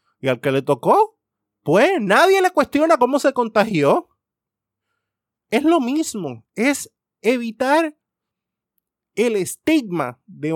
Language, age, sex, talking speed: Spanish, 20-39, male, 115 wpm